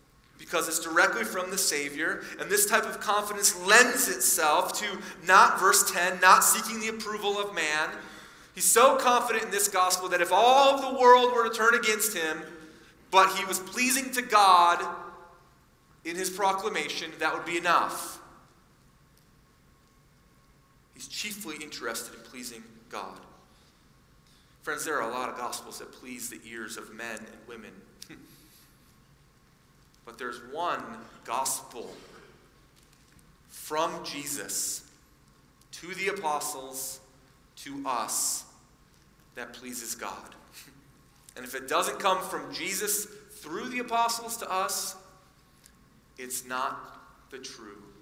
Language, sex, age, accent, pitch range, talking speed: English, male, 30-49, American, 140-205 Hz, 130 wpm